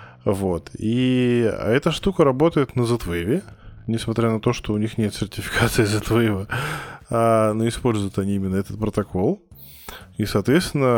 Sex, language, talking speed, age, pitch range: male, Russian, 130 wpm, 20-39, 95-120 Hz